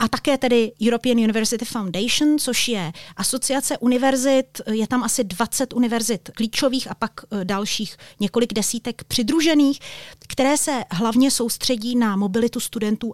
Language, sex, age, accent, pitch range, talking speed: Czech, female, 30-49, native, 220-250 Hz, 135 wpm